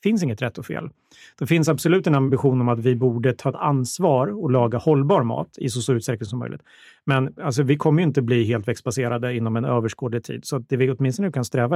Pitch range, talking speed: 120-145 Hz, 240 wpm